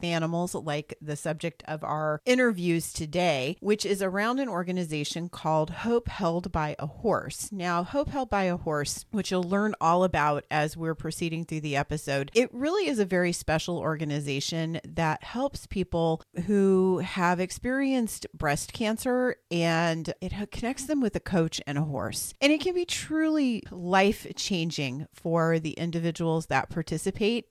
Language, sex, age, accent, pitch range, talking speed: English, female, 40-59, American, 155-205 Hz, 155 wpm